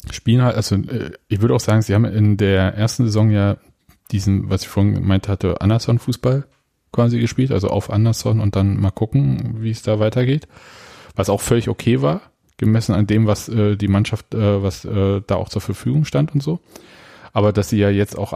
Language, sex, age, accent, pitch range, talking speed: German, male, 30-49, German, 100-110 Hz, 205 wpm